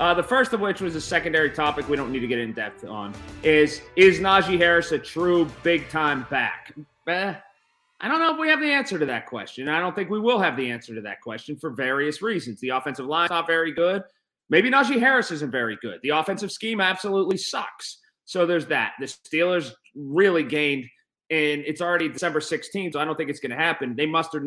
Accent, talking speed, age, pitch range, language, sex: American, 220 wpm, 30-49, 145-185 Hz, English, male